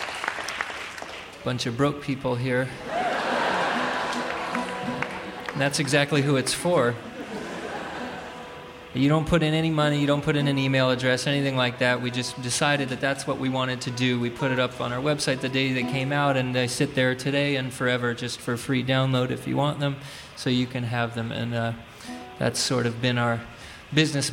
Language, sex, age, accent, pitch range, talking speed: English, male, 30-49, American, 125-145 Hz, 190 wpm